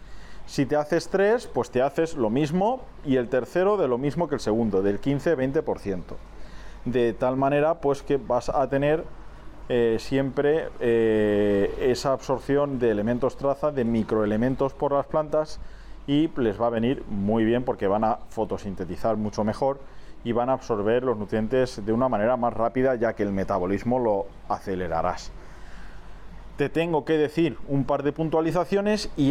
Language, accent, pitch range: Spanish, Spanish, 110-145 Hz